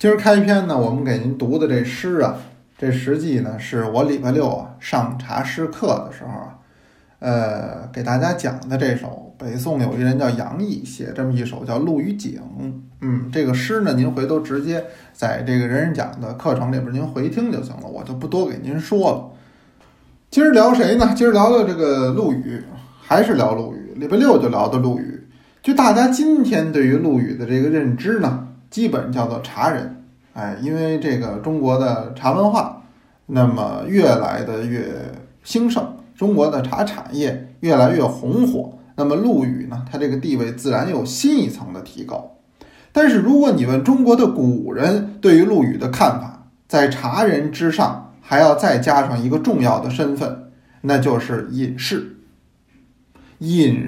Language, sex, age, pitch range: Chinese, male, 20-39, 125-165 Hz